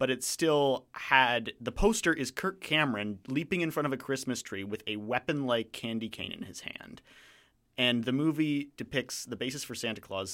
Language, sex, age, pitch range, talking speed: English, male, 30-49, 115-140 Hz, 190 wpm